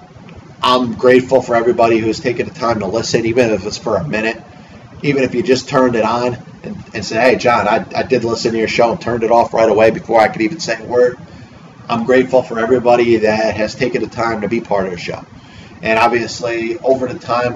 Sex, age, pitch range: male, 30-49, 115-130 Hz